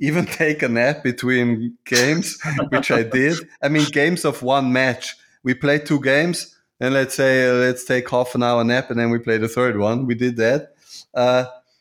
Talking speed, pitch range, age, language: 200 wpm, 115-135 Hz, 20-39, English